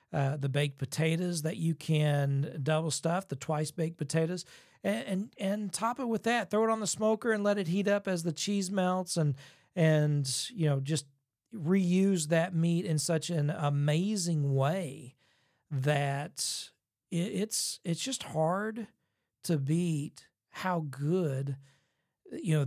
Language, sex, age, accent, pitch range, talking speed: English, male, 40-59, American, 140-180 Hz, 155 wpm